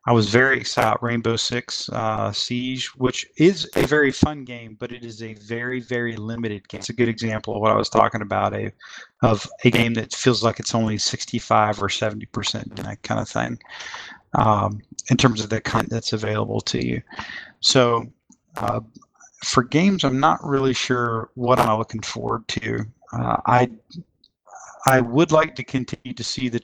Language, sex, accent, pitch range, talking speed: English, male, American, 110-125 Hz, 185 wpm